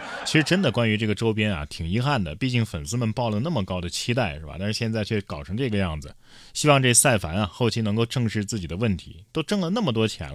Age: 20-39